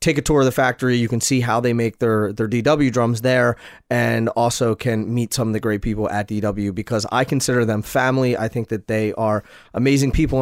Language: English